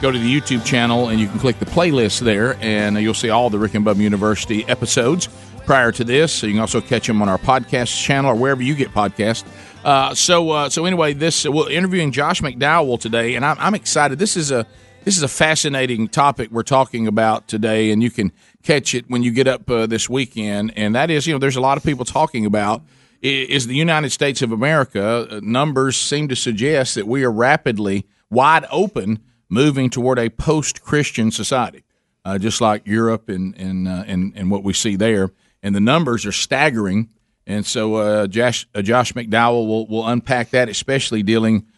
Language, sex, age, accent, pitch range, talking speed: English, male, 40-59, American, 105-130 Hz, 210 wpm